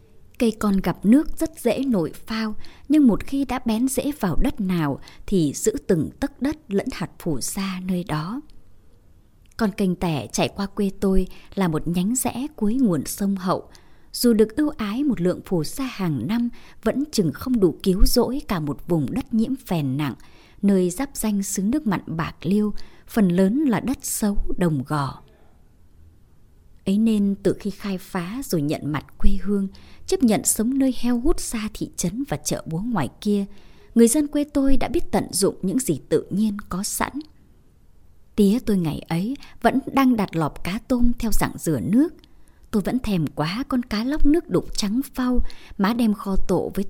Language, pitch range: Vietnamese, 180-250 Hz